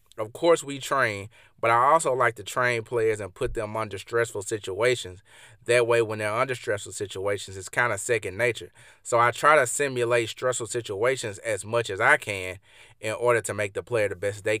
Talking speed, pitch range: 205 wpm, 110-130 Hz